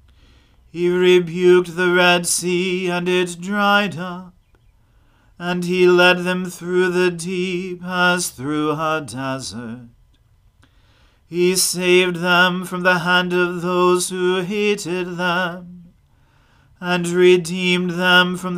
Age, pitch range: 40-59, 130-180 Hz